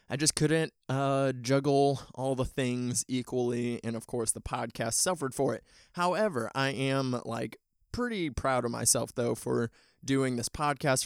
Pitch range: 120-135 Hz